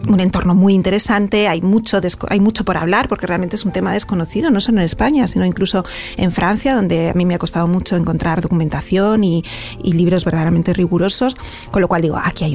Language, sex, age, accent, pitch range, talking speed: Spanish, female, 30-49, Spanish, 175-220 Hz, 210 wpm